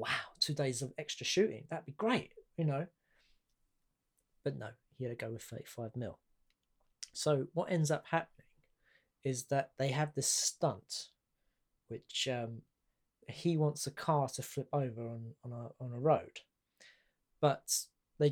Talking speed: 150 wpm